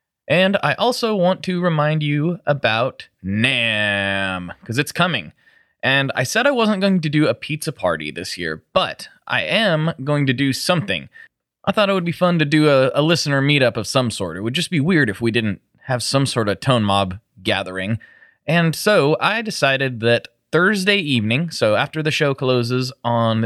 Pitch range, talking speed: 115-155 Hz, 190 wpm